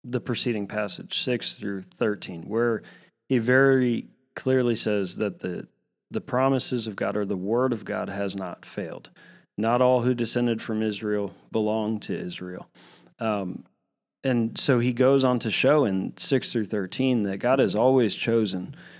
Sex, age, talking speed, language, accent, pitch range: male, 30-49, 160 wpm, English, American, 105-130 Hz